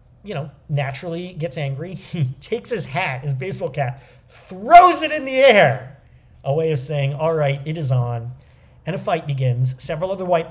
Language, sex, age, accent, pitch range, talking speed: English, male, 40-59, American, 130-155 Hz, 190 wpm